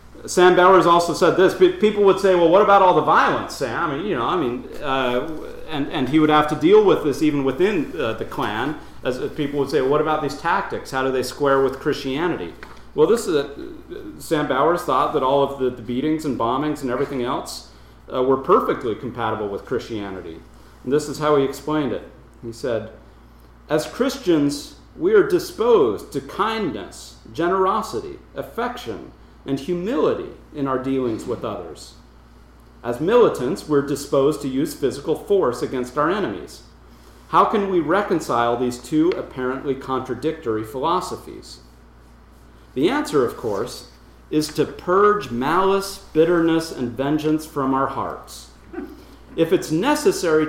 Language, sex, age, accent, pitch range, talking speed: English, male, 40-59, American, 125-180 Hz, 160 wpm